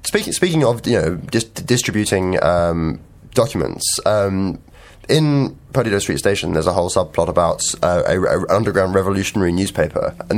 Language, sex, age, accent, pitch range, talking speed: English, male, 20-39, British, 90-120 Hz, 155 wpm